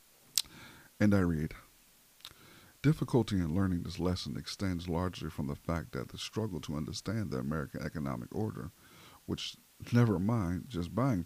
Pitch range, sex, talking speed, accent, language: 85-120 Hz, male, 145 wpm, American, English